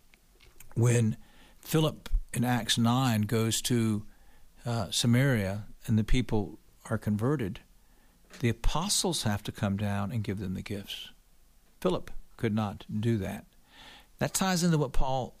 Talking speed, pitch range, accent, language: 135 wpm, 105-125 Hz, American, English